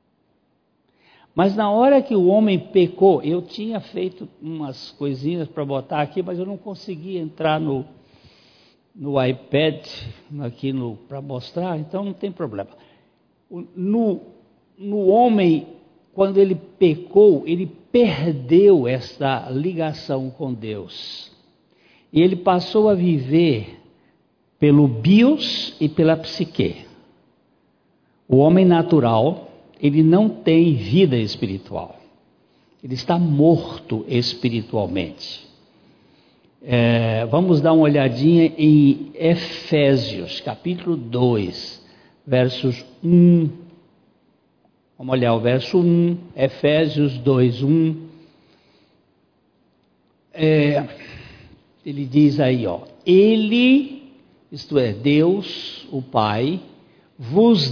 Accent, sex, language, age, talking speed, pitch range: Brazilian, male, Portuguese, 60-79, 100 wpm, 135-180 Hz